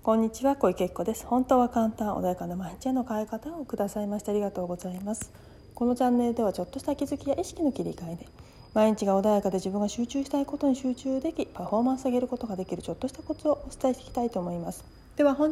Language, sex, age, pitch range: Japanese, female, 40-59, 190-270 Hz